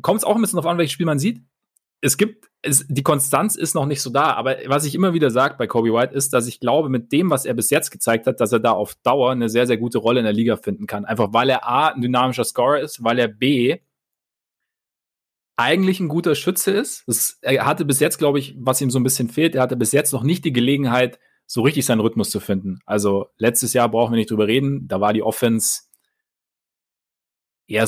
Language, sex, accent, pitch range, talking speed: German, male, German, 120-145 Hz, 240 wpm